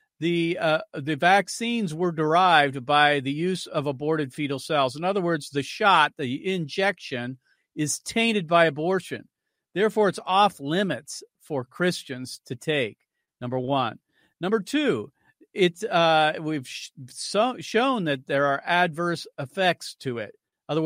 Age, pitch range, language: 40-59, 140-185 Hz, English